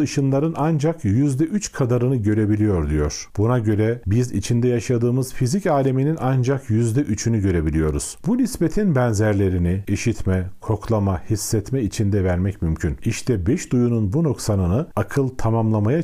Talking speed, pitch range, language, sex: 120 wpm, 100-140 Hz, Turkish, male